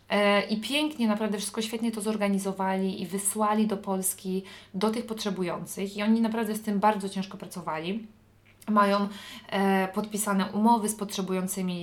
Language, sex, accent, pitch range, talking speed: English, female, Polish, 180-215 Hz, 135 wpm